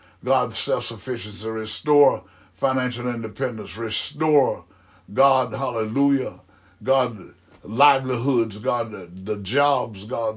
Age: 60-79